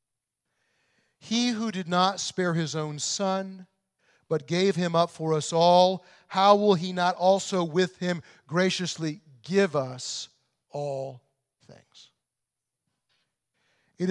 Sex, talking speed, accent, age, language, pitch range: male, 120 wpm, American, 50-69, English, 125-180 Hz